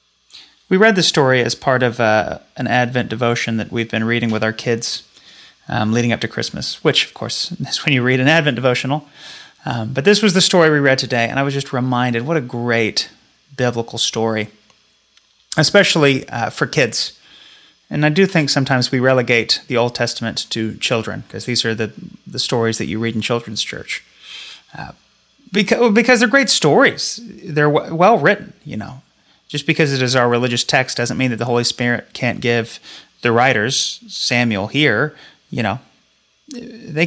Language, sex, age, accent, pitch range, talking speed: English, male, 30-49, American, 120-180 Hz, 185 wpm